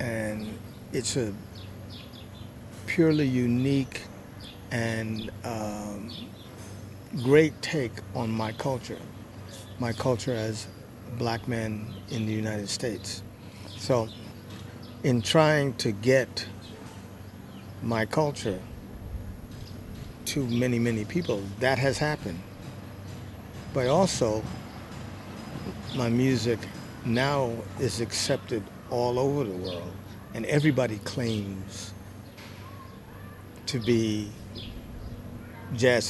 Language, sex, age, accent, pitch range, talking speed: English, male, 50-69, American, 100-120 Hz, 85 wpm